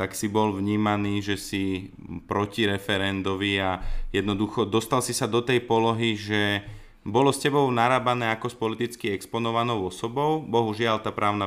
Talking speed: 145 wpm